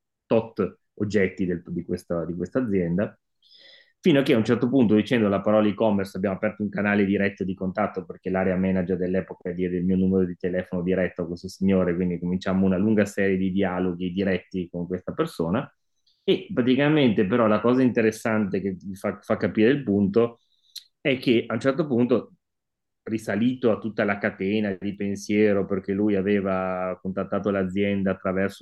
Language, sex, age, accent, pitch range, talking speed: Italian, male, 30-49, native, 95-105 Hz, 165 wpm